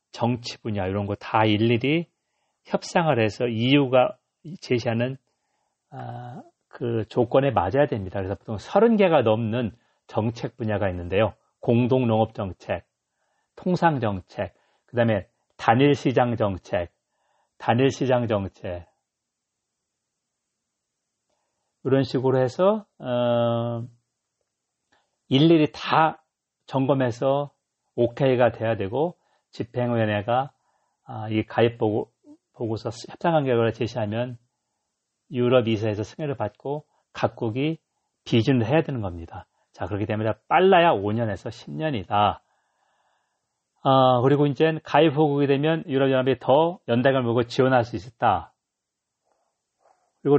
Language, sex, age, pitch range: Korean, male, 40-59, 110-135 Hz